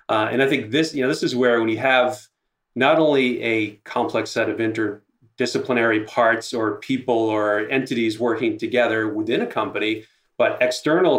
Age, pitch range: 30-49, 110-135 Hz